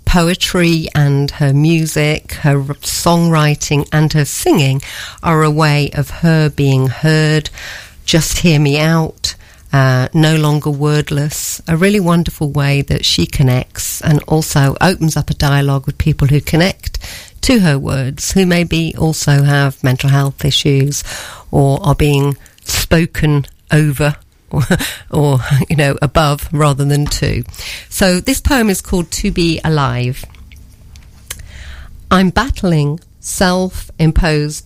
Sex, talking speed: female, 130 wpm